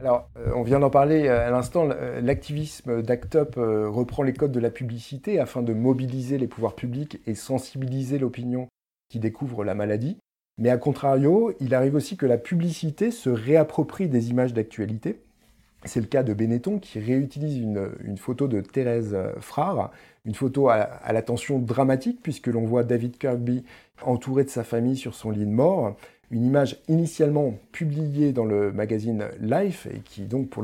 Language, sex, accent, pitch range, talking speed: French, male, French, 115-145 Hz, 170 wpm